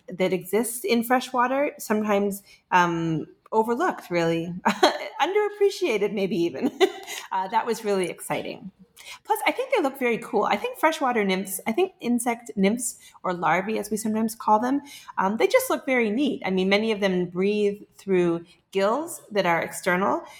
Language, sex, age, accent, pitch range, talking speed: English, female, 30-49, American, 175-235 Hz, 160 wpm